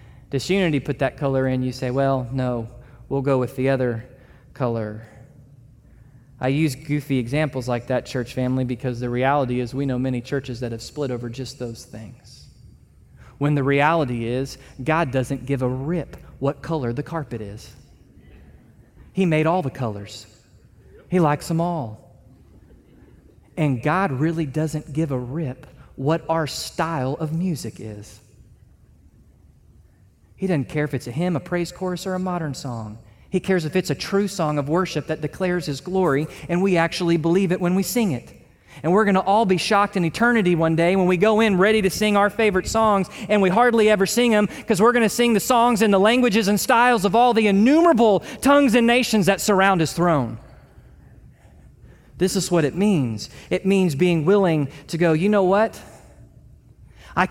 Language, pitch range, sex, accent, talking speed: English, 130-190 Hz, male, American, 185 wpm